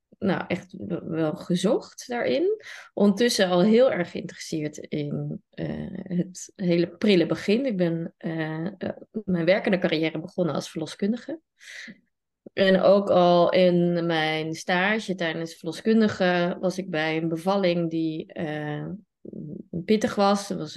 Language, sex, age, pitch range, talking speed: Dutch, female, 30-49, 165-195 Hz, 130 wpm